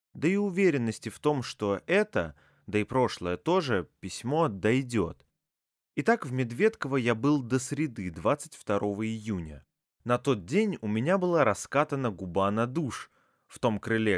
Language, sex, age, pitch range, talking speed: Russian, male, 20-39, 100-150 Hz, 150 wpm